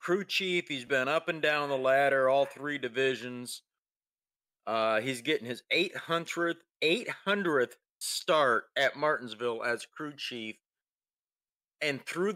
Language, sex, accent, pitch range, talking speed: English, male, American, 120-155 Hz, 130 wpm